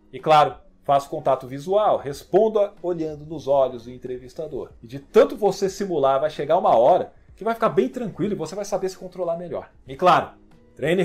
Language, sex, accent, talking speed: Portuguese, male, Brazilian, 190 wpm